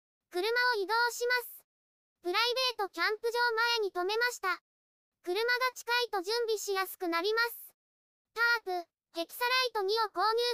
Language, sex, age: Japanese, male, 20-39